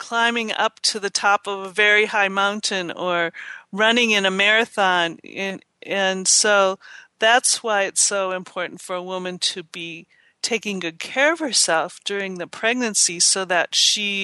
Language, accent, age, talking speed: English, American, 40-59, 165 wpm